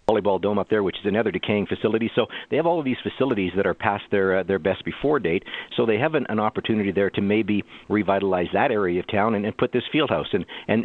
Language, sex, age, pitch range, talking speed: English, male, 50-69, 95-115 Hz, 260 wpm